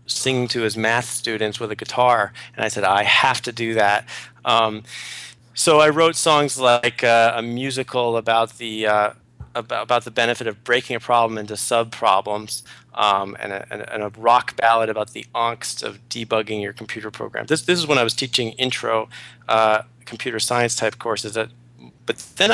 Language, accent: English, American